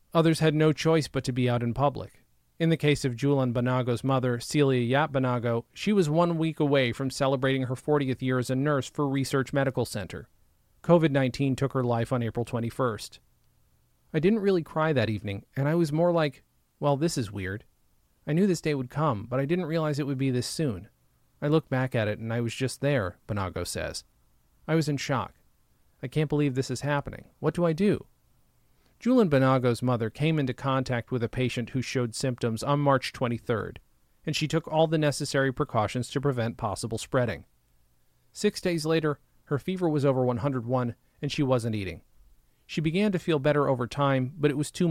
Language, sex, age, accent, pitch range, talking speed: English, male, 30-49, American, 120-150 Hz, 200 wpm